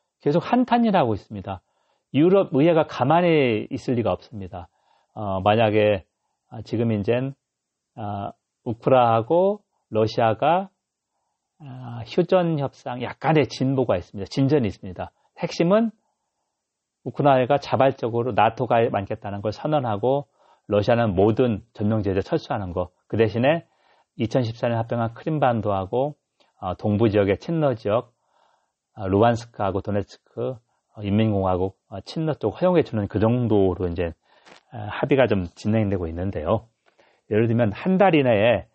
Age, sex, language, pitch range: 40-59, male, Korean, 105-145 Hz